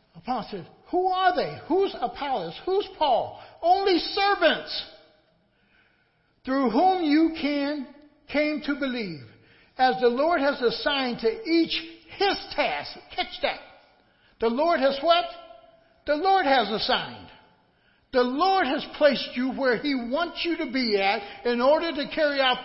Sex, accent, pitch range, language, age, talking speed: male, American, 205-300 Hz, English, 60-79, 140 wpm